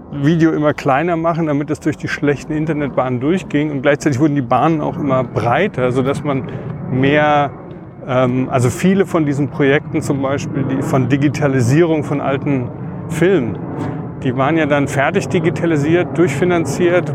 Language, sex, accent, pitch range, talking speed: German, male, German, 130-155 Hz, 155 wpm